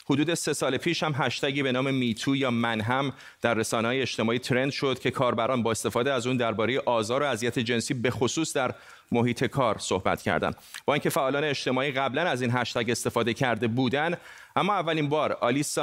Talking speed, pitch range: 190 wpm, 115-140 Hz